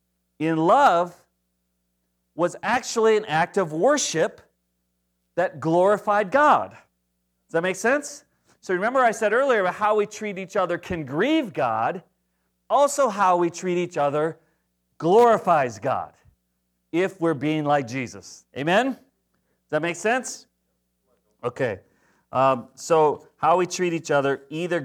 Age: 40-59